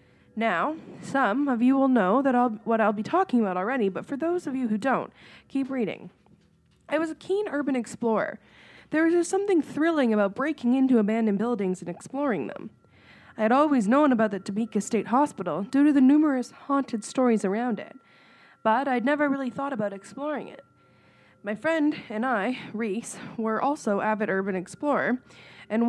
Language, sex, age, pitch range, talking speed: English, female, 20-39, 215-285 Hz, 180 wpm